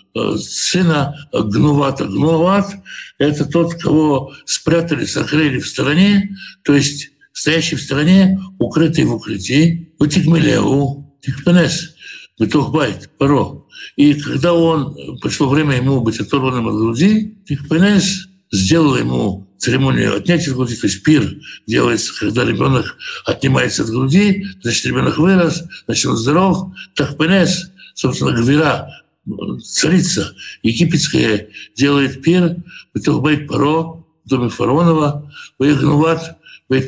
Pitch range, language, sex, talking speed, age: 140-180 Hz, Russian, male, 115 wpm, 60-79